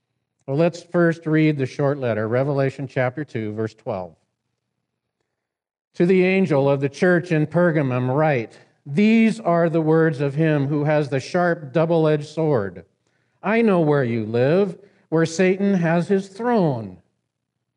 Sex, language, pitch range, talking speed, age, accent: male, English, 135-180 Hz, 145 wpm, 50-69, American